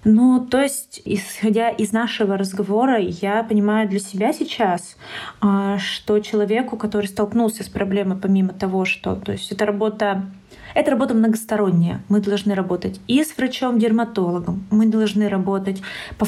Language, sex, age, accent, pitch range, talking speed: Russian, female, 20-39, native, 205-235 Hz, 135 wpm